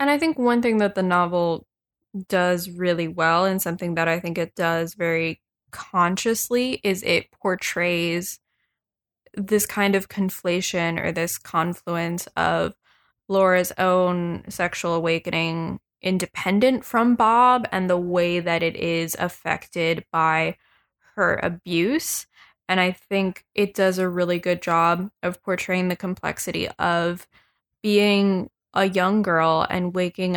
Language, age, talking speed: English, 20-39, 135 wpm